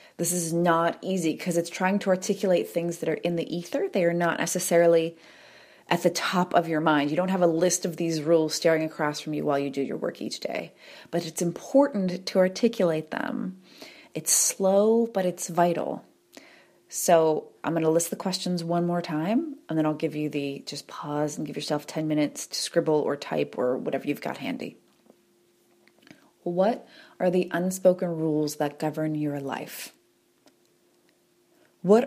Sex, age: female, 30-49